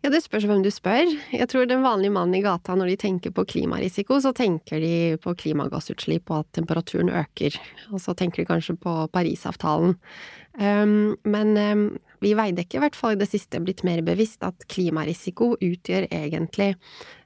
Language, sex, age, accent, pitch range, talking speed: English, female, 20-39, Swedish, 175-220 Hz, 175 wpm